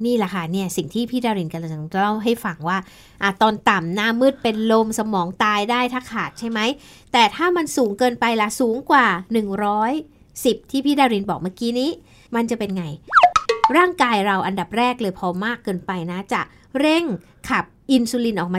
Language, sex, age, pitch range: Thai, female, 60-79, 205-285 Hz